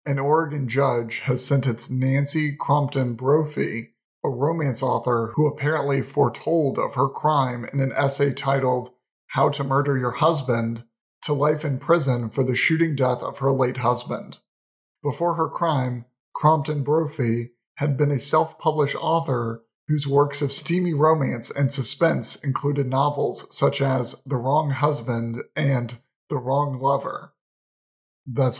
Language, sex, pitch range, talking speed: English, male, 125-150 Hz, 140 wpm